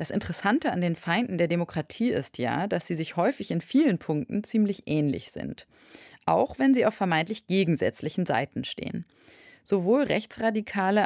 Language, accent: German, German